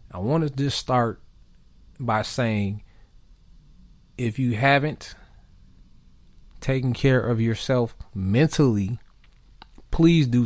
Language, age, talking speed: English, 20-39, 100 wpm